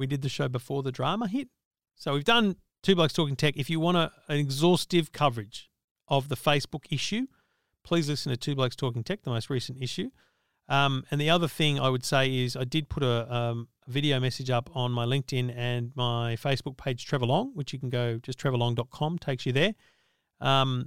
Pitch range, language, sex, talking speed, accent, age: 125-155 Hz, English, male, 205 wpm, Australian, 40-59